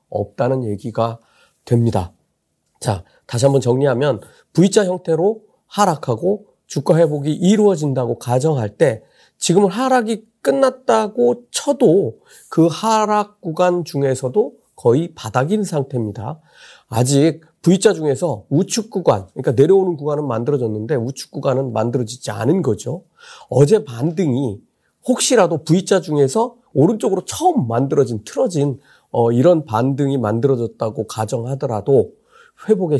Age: 40-59